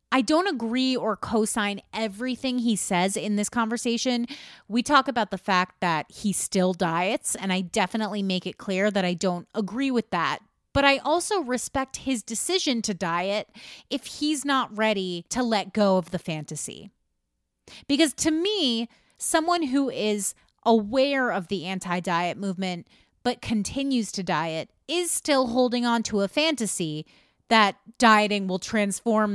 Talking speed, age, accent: 155 wpm, 30-49, American